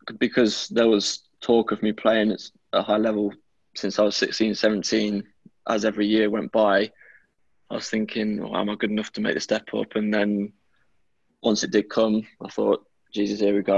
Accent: British